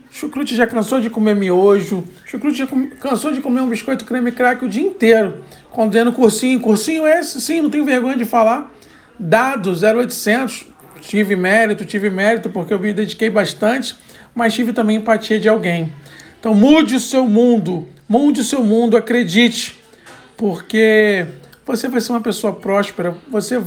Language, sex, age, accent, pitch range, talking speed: Portuguese, male, 50-69, Brazilian, 195-255 Hz, 160 wpm